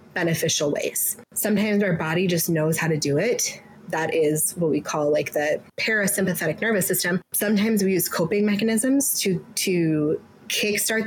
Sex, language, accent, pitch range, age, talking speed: female, English, American, 160-215 Hz, 20-39, 155 wpm